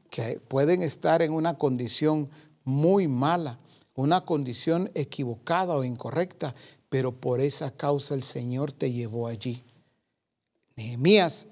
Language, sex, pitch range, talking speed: Spanish, male, 125-160 Hz, 120 wpm